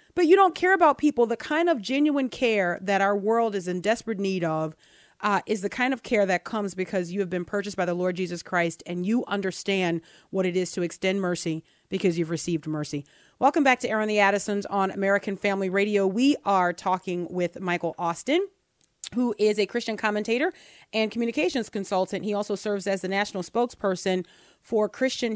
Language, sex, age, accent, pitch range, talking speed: English, female, 30-49, American, 175-215 Hz, 195 wpm